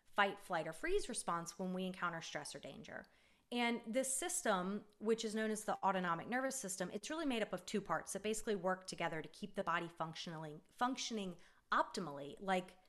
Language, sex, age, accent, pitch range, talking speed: English, female, 30-49, American, 180-230 Hz, 190 wpm